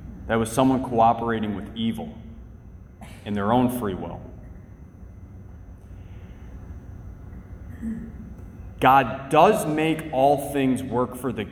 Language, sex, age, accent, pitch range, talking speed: English, male, 30-49, American, 95-120 Hz, 100 wpm